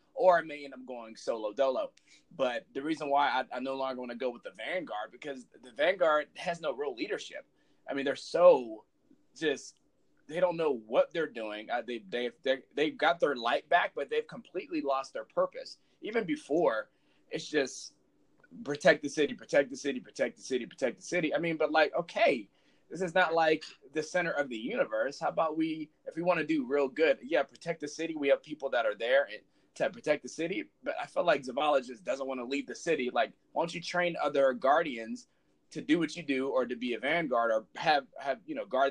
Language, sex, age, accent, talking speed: English, male, 30-49, American, 220 wpm